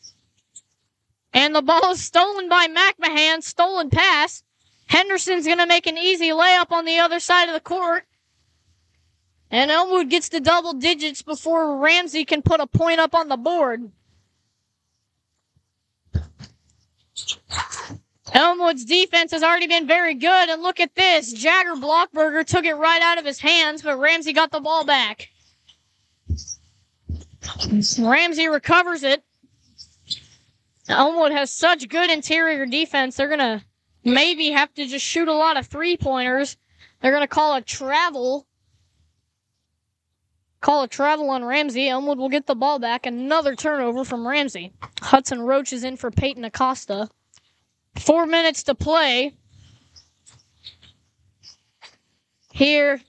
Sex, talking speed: female, 135 wpm